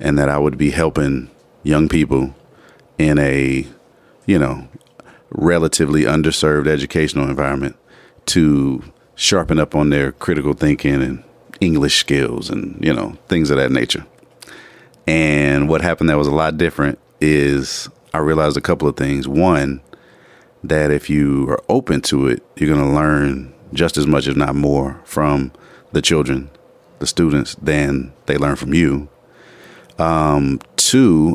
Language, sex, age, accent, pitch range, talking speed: English, male, 40-59, American, 70-80 Hz, 150 wpm